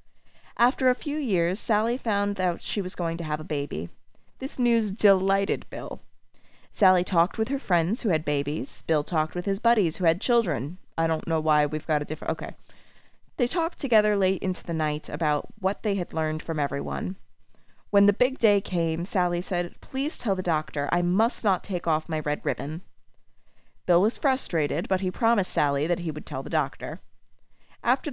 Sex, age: female, 30-49